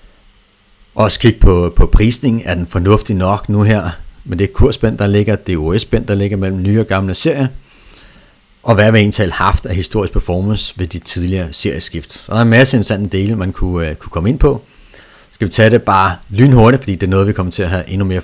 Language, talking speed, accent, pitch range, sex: Danish, 235 wpm, native, 90-110 Hz, male